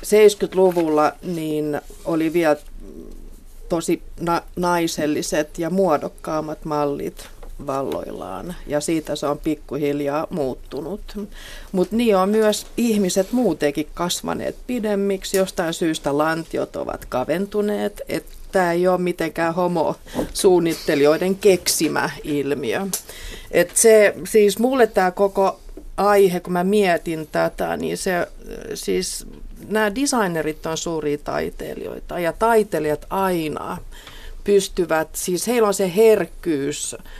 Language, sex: Finnish, female